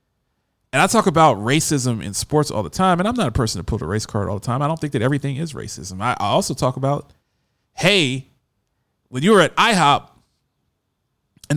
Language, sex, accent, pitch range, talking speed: English, male, American, 120-170 Hz, 215 wpm